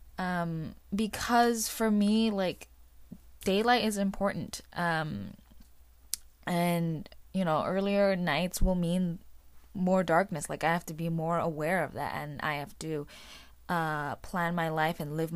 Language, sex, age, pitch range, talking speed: English, female, 20-39, 155-200 Hz, 145 wpm